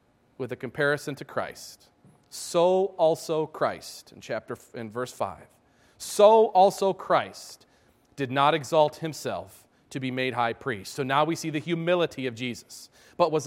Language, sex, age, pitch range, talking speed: English, male, 40-59, 160-225 Hz, 160 wpm